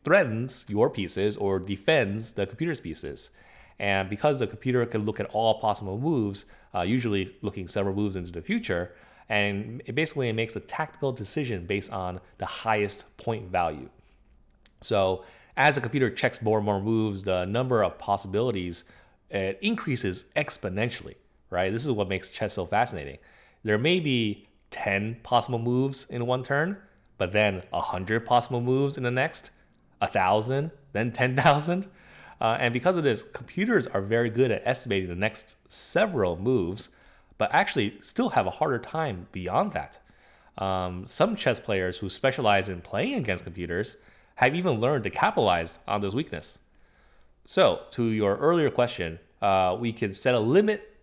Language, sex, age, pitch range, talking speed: English, male, 30-49, 95-130 Hz, 160 wpm